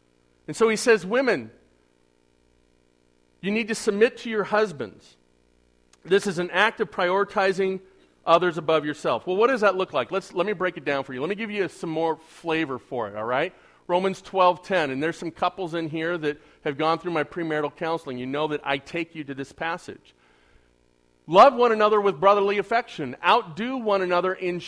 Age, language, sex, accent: 40-59, English, male, American